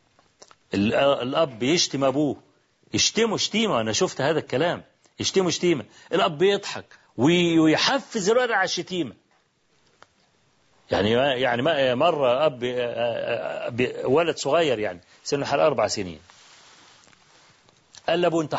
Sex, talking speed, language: male, 100 wpm, Arabic